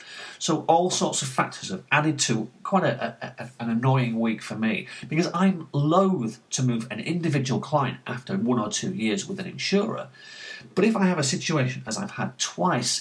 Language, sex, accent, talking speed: English, male, British, 200 wpm